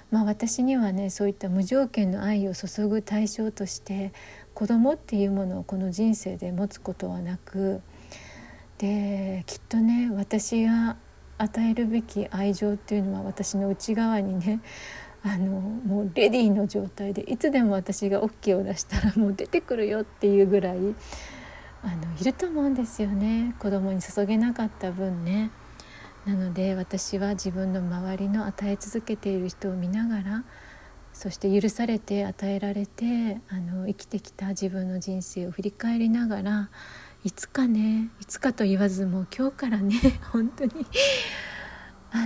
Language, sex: Japanese, female